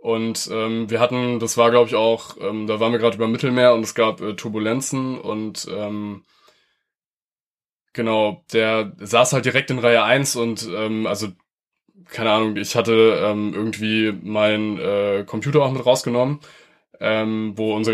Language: German